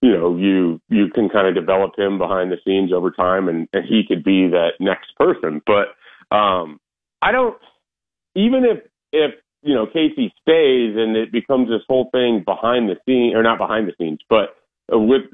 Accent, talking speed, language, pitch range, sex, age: American, 200 wpm, English, 100-145 Hz, male, 40-59